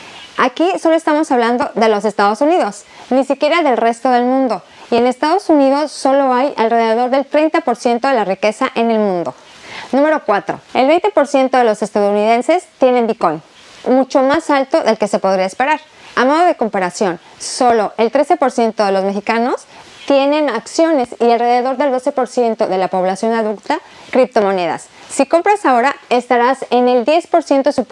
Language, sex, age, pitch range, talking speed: Spanish, female, 30-49, 215-280 Hz, 160 wpm